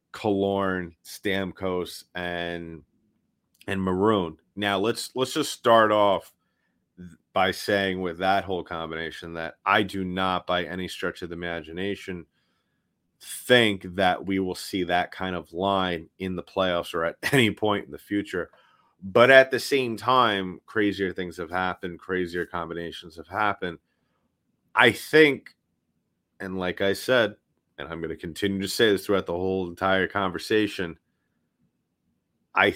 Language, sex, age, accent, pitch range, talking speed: English, male, 30-49, American, 90-100 Hz, 145 wpm